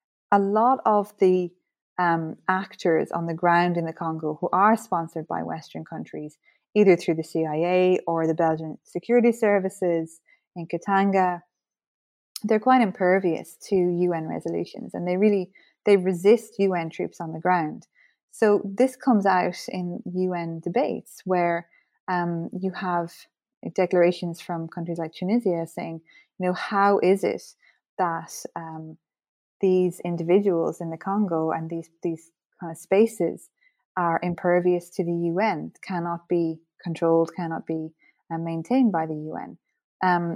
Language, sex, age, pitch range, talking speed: English, female, 20-39, 165-200 Hz, 145 wpm